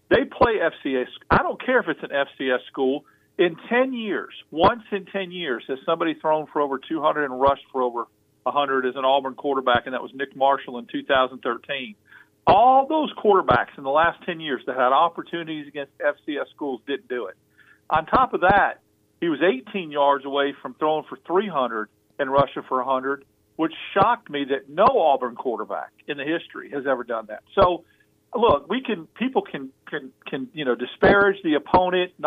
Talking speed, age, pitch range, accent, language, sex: 190 wpm, 50-69, 140-180 Hz, American, English, male